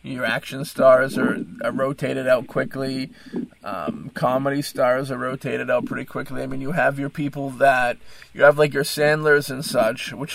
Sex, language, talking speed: male, English, 180 wpm